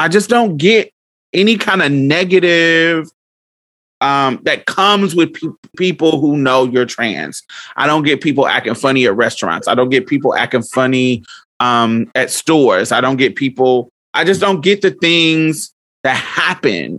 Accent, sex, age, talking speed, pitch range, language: American, male, 30-49, 165 wpm, 125-170 Hz, English